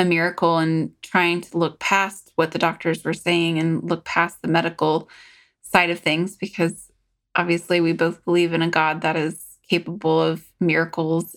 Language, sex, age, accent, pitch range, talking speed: English, female, 20-39, American, 165-185 Hz, 175 wpm